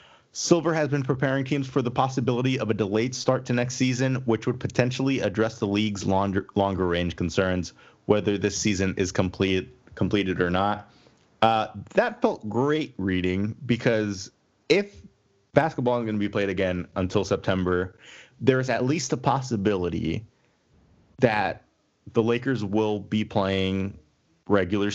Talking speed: 145 wpm